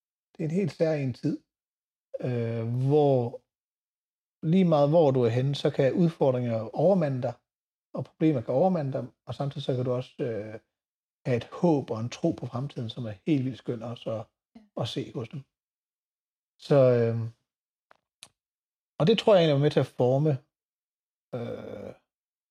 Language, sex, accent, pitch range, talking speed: Danish, male, native, 120-145 Hz, 170 wpm